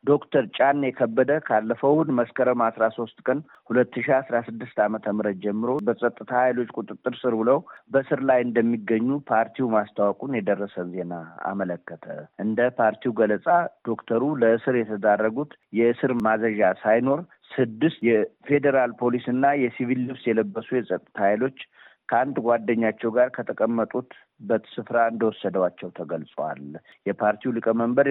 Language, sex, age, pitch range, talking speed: Amharic, male, 50-69, 105-125 Hz, 105 wpm